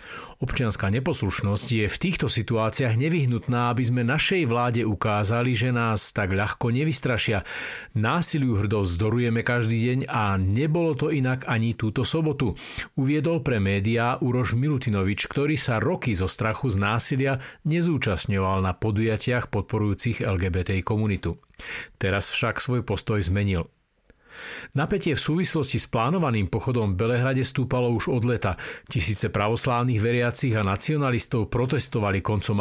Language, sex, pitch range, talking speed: Slovak, male, 105-130 Hz, 130 wpm